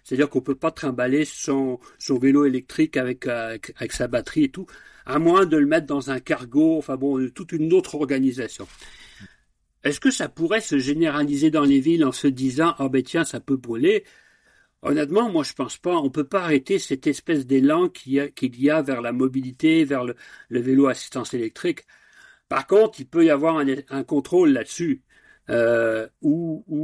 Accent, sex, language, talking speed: French, male, French, 210 wpm